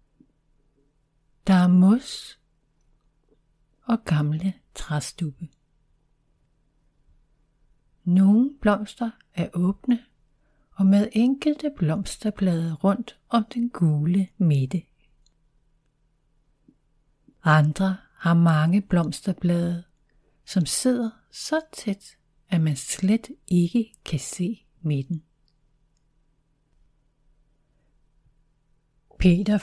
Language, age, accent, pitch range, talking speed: Danish, 60-79, native, 155-200 Hz, 70 wpm